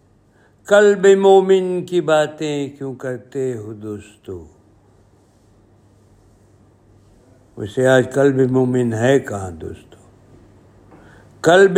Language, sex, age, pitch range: Urdu, male, 60-79, 105-130 Hz